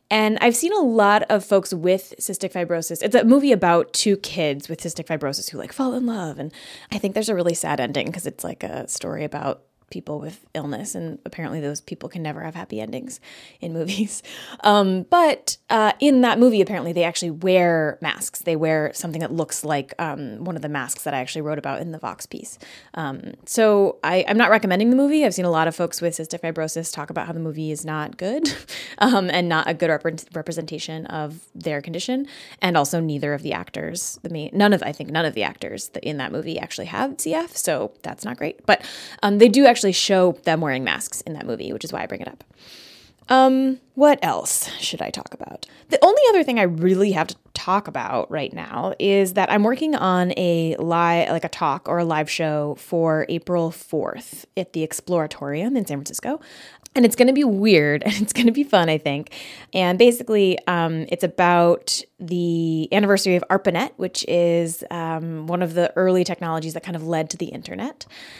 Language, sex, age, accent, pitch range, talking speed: English, female, 20-39, American, 160-210 Hz, 210 wpm